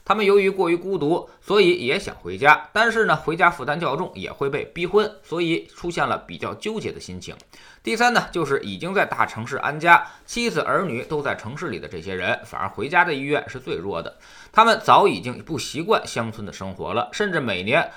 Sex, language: male, Chinese